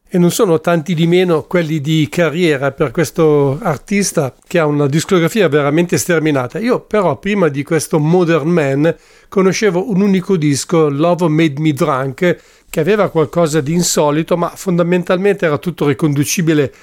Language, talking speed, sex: English, 155 wpm, male